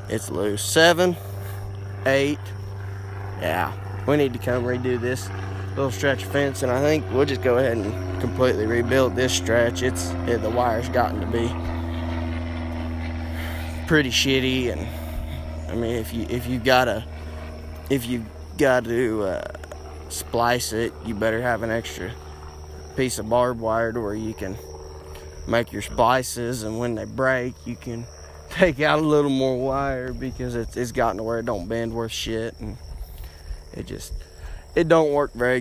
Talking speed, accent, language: 160 wpm, American, English